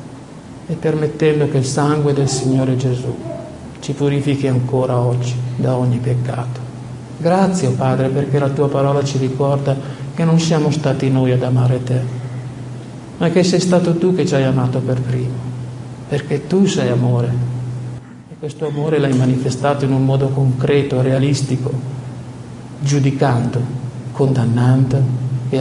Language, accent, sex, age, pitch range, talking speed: Italian, native, male, 50-69, 125-140 Hz, 140 wpm